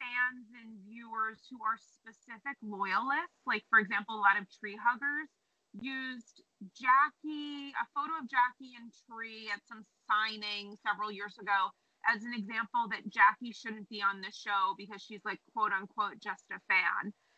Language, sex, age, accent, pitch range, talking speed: English, female, 30-49, American, 210-265 Hz, 160 wpm